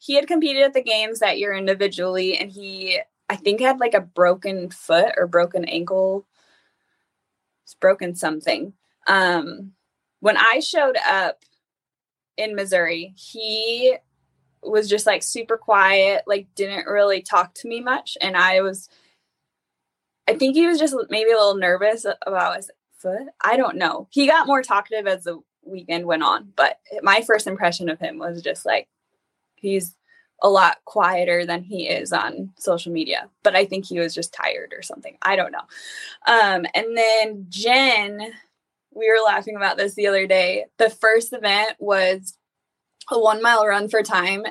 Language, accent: English, American